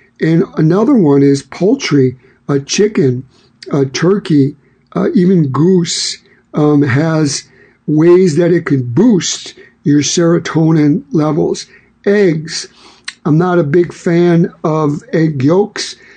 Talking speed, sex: 125 wpm, male